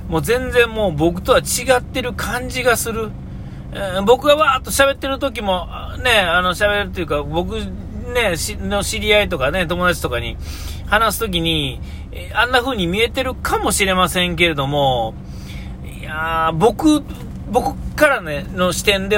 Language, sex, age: Japanese, male, 40-59